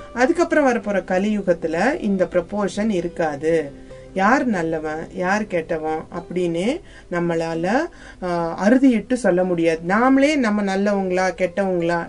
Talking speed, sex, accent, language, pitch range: 100 wpm, female, native, Tamil, 180-250 Hz